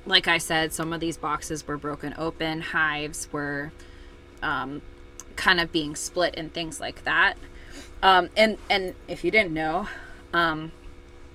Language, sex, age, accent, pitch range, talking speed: English, female, 20-39, American, 145-175 Hz, 155 wpm